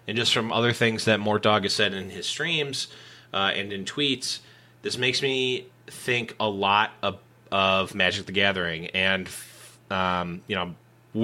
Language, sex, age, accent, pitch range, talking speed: English, male, 20-39, American, 100-125 Hz, 175 wpm